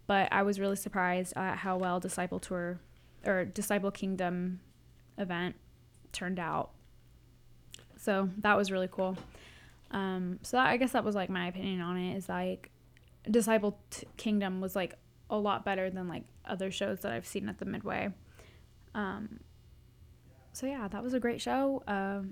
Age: 10-29